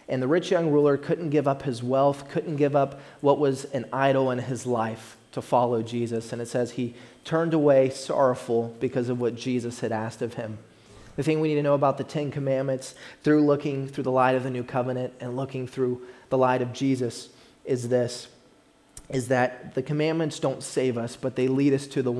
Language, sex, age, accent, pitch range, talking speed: English, male, 30-49, American, 120-135 Hz, 215 wpm